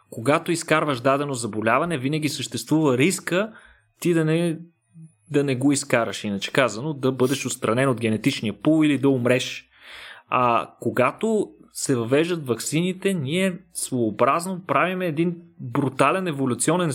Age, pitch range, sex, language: 30-49, 125-165 Hz, male, Bulgarian